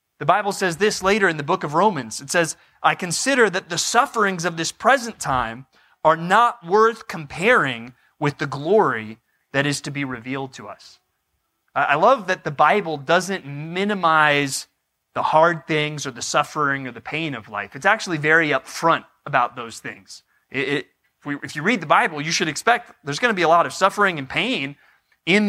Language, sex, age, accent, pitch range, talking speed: English, male, 30-49, American, 145-210 Hz, 190 wpm